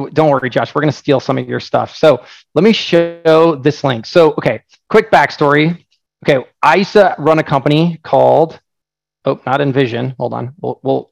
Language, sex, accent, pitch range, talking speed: English, male, American, 140-175 Hz, 195 wpm